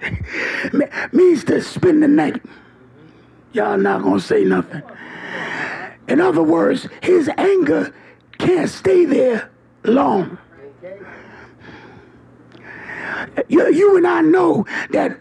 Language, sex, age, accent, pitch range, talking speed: English, male, 50-69, American, 300-360 Hz, 100 wpm